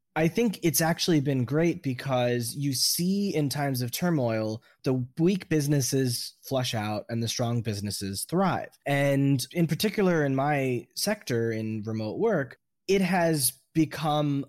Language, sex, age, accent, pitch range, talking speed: English, male, 20-39, American, 110-150 Hz, 145 wpm